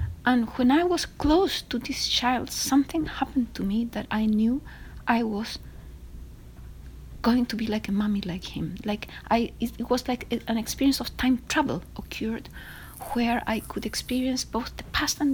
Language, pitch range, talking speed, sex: English, 205-250 Hz, 175 wpm, female